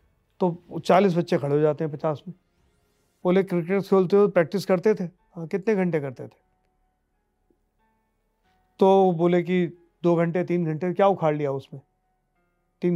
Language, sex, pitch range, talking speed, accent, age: Hindi, male, 140-175 Hz, 145 wpm, native, 40-59